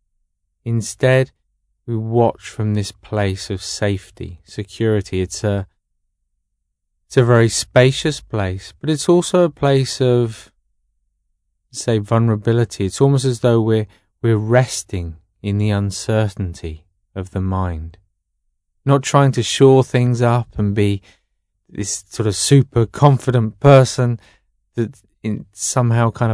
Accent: British